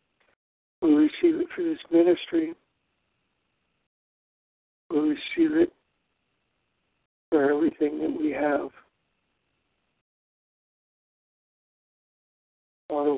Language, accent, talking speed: English, American, 70 wpm